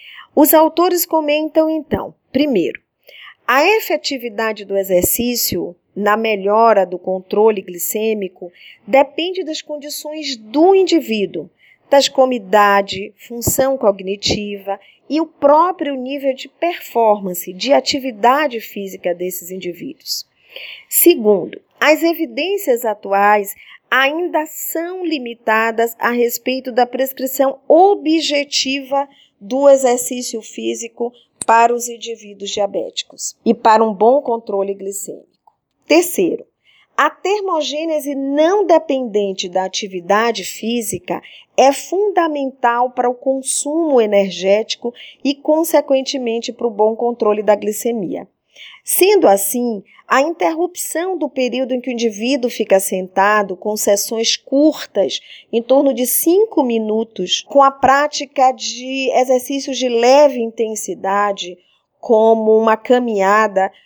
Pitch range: 210-290 Hz